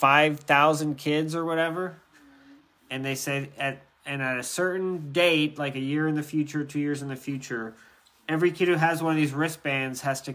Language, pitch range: English, 125-150 Hz